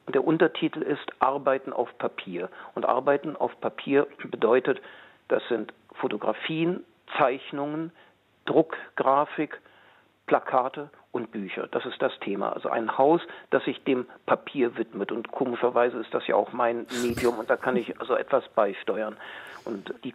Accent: German